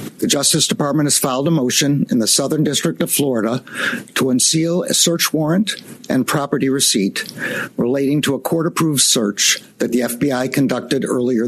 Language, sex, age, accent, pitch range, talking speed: English, male, 60-79, American, 130-170 Hz, 160 wpm